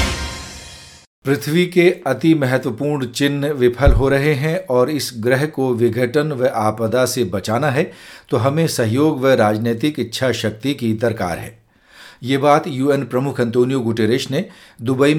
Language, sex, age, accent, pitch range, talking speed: Hindi, male, 50-69, native, 115-145 Hz, 145 wpm